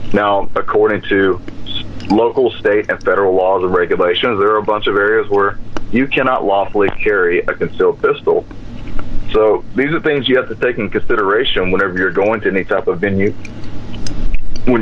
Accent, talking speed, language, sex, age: American, 175 wpm, English, male, 30-49